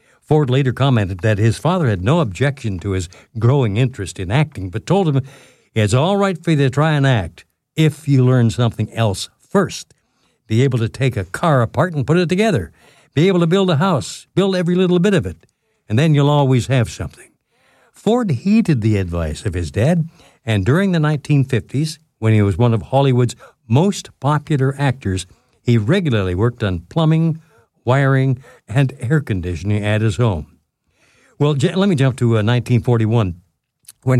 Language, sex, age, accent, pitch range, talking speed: English, male, 60-79, American, 110-150 Hz, 180 wpm